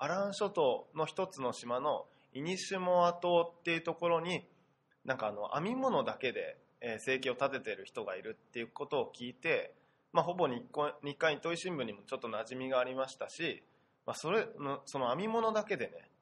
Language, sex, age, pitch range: Japanese, male, 20-39, 140-210 Hz